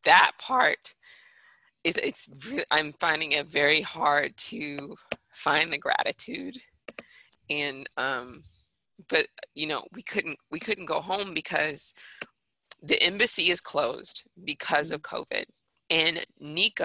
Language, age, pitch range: English, 20-39, 150-180 Hz